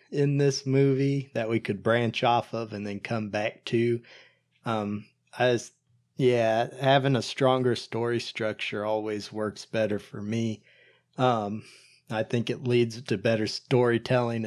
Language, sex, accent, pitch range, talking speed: English, male, American, 110-135 Hz, 145 wpm